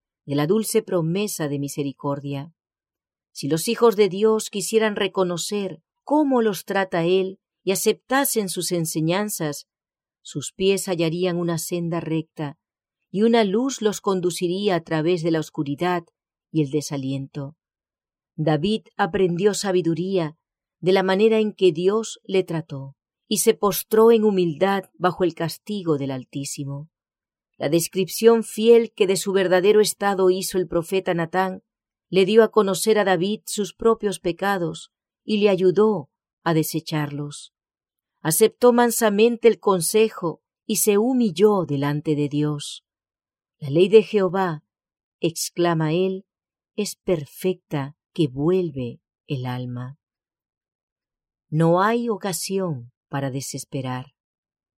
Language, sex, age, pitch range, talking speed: English, female, 40-59, 155-210 Hz, 125 wpm